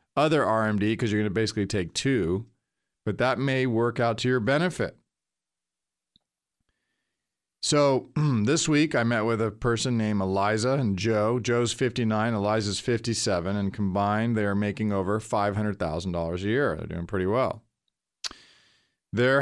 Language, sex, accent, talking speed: English, male, American, 145 wpm